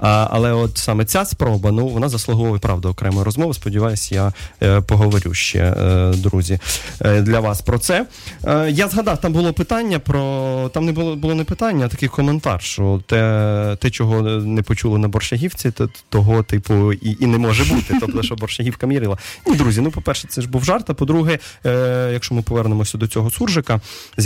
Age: 20-39